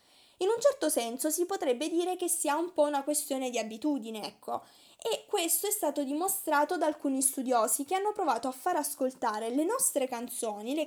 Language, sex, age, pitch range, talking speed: Italian, female, 20-39, 245-330 Hz, 190 wpm